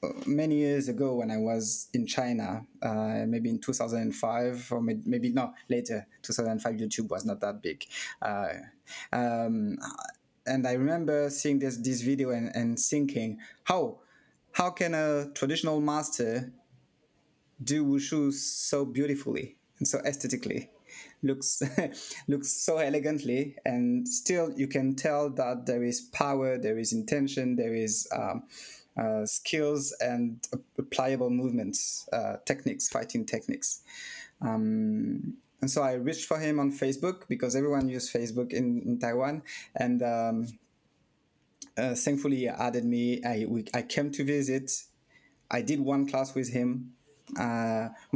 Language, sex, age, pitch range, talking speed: English, male, 20-39, 120-150 Hz, 140 wpm